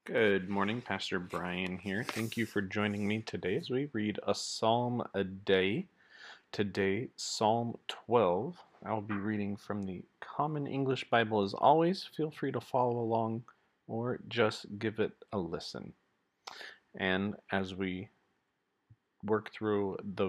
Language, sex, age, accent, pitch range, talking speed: English, male, 30-49, American, 100-125 Hz, 140 wpm